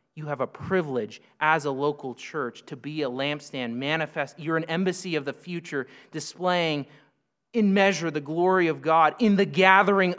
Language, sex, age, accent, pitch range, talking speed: English, male, 30-49, American, 140-185 Hz, 170 wpm